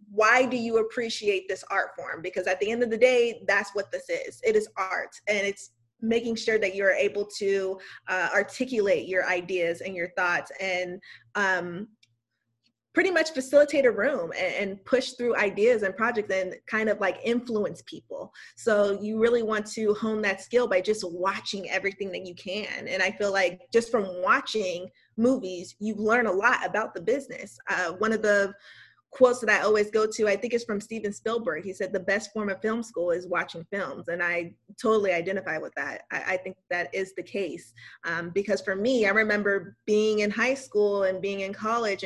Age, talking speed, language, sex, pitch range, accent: 20-39, 200 wpm, English, female, 190-230 Hz, American